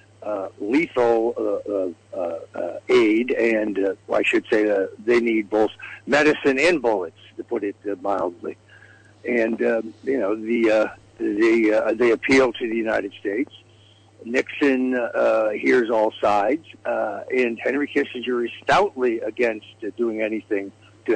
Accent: American